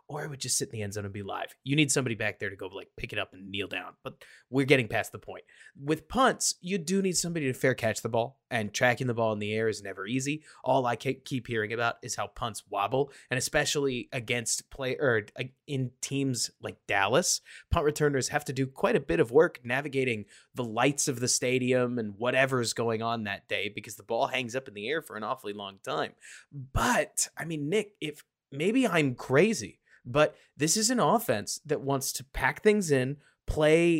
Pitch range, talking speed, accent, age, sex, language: 115-150 Hz, 220 wpm, American, 20-39, male, English